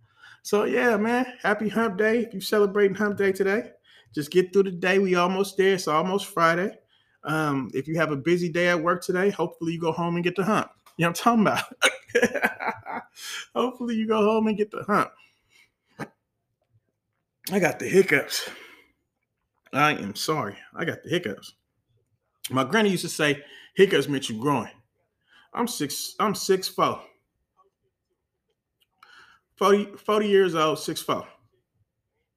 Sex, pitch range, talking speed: male, 160-220 Hz, 150 wpm